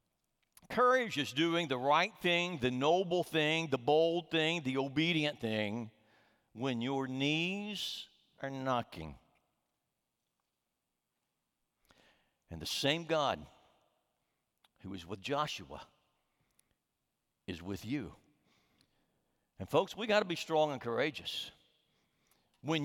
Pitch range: 145-205 Hz